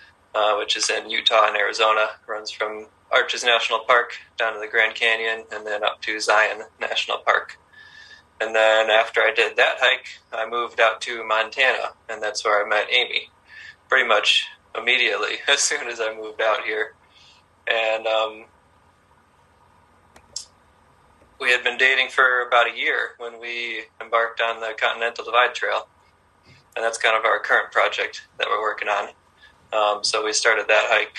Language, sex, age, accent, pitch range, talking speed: English, male, 20-39, American, 105-115 Hz, 165 wpm